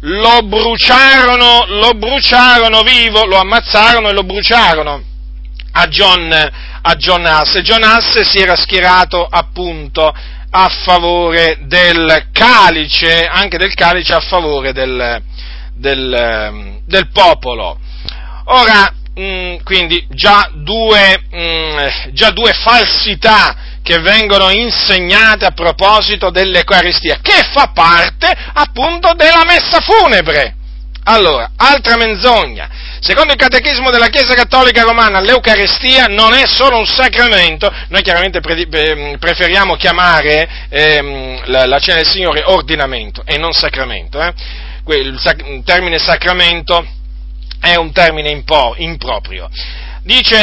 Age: 40-59